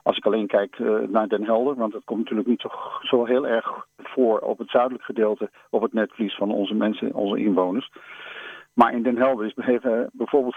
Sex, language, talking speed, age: male, Dutch, 195 wpm, 50-69